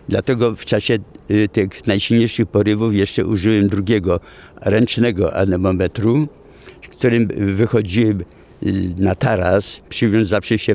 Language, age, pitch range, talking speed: English, 60-79, 95-115 Hz, 100 wpm